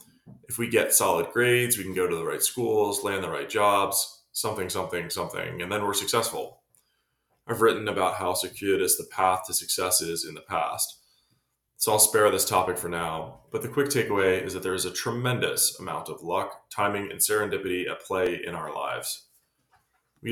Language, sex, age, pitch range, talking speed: English, male, 20-39, 95-145 Hz, 190 wpm